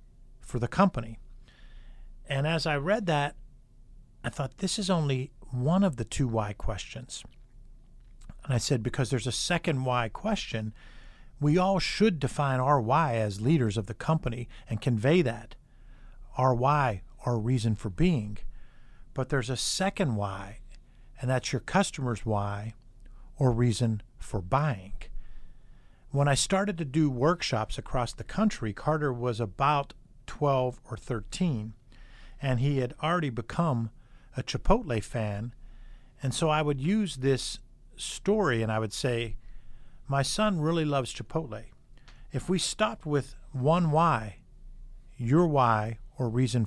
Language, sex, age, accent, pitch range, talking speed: English, male, 50-69, American, 120-150 Hz, 145 wpm